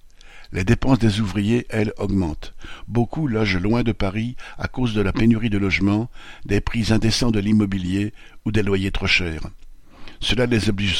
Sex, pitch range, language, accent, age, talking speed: male, 100-115 Hz, French, French, 60-79, 170 wpm